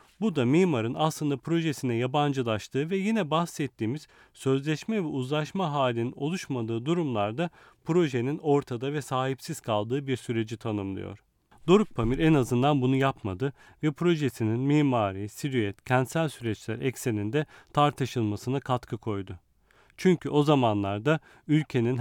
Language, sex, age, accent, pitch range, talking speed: Turkish, male, 40-59, native, 115-150 Hz, 115 wpm